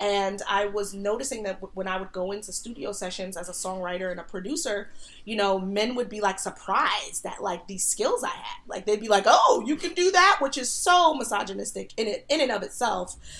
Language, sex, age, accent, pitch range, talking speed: English, female, 20-39, American, 195-240 Hz, 225 wpm